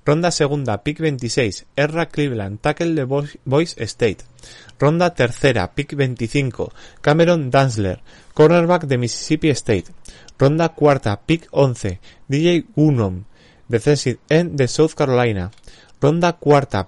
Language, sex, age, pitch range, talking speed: Spanish, male, 30-49, 115-150 Hz, 120 wpm